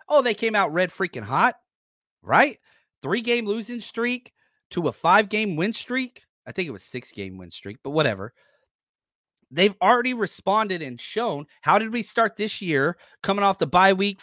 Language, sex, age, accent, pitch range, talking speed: English, male, 30-49, American, 140-210 Hz, 175 wpm